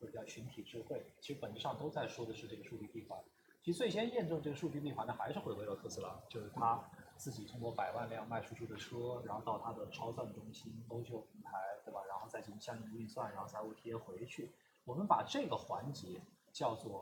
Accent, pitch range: native, 120-195 Hz